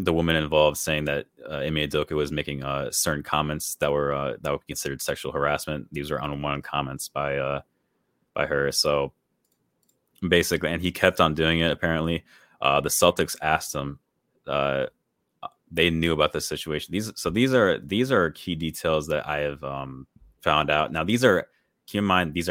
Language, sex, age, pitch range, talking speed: English, male, 30-49, 75-85 Hz, 185 wpm